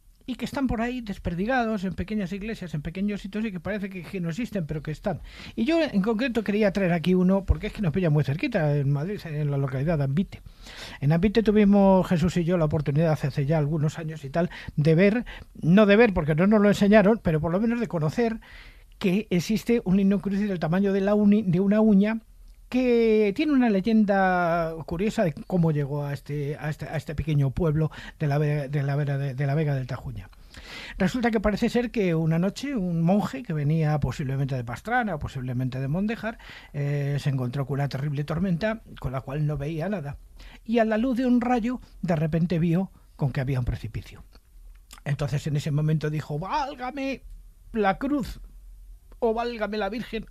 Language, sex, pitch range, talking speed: Spanish, male, 150-215 Hz, 200 wpm